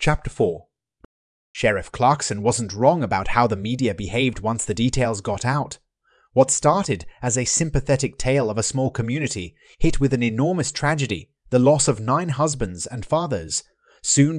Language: English